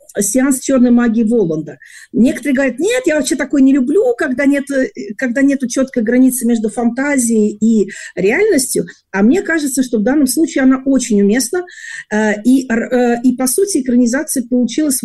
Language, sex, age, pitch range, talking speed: Russian, female, 40-59, 205-270 Hz, 145 wpm